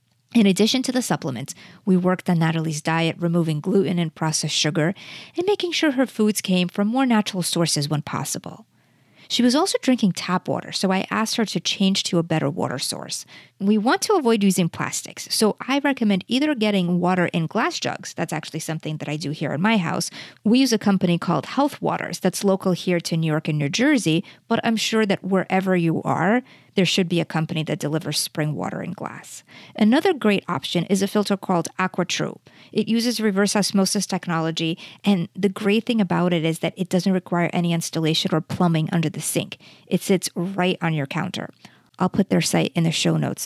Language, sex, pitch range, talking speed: English, female, 165-210 Hz, 205 wpm